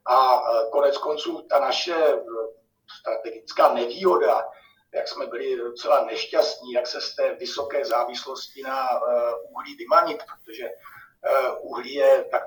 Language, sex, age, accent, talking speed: Czech, male, 50-69, native, 120 wpm